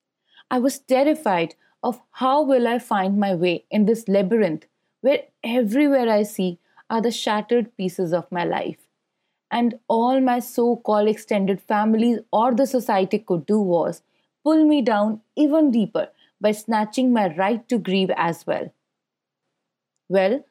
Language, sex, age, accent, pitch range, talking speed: English, female, 30-49, Indian, 210-270 Hz, 145 wpm